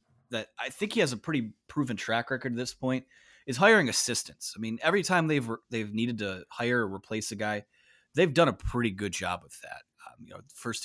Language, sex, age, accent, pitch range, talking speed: English, male, 30-49, American, 105-130 Hz, 225 wpm